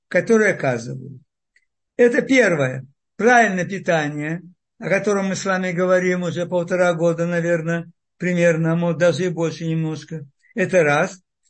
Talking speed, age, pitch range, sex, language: 125 wpm, 60-79, 170-230 Hz, male, Russian